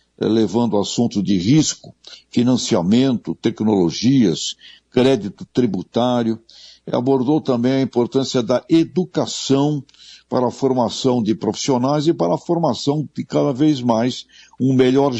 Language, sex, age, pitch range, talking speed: Portuguese, male, 60-79, 110-135 Hz, 115 wpm